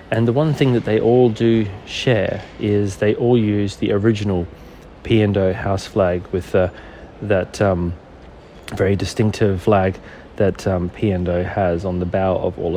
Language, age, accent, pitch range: English, 30-49, Australian, 100-120 Hz